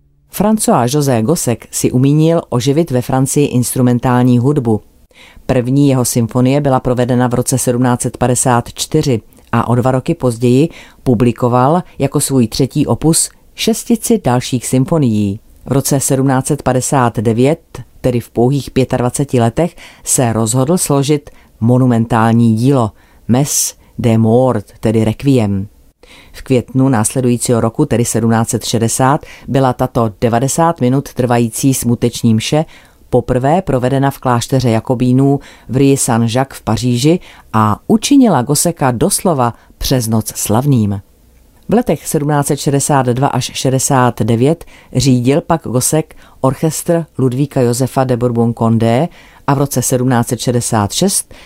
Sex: female